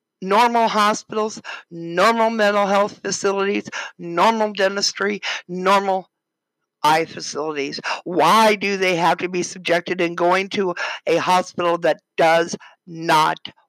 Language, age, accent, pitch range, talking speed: English, 60-79, American, 165-190 Hz, 115 wpm